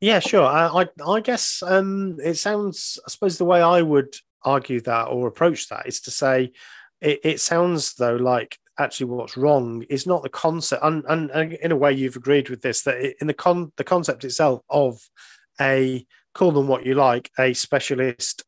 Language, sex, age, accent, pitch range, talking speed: English, male, 40-59, British, 125-155 Hz, 200 wpm